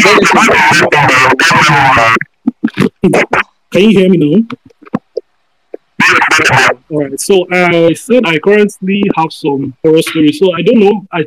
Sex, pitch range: male, 130-155 Hz